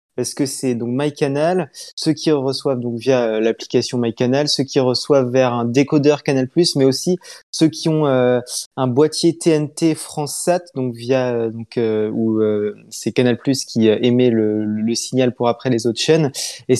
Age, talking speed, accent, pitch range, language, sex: 20-39, 170 wpm, French, 125-155 Hz, French, male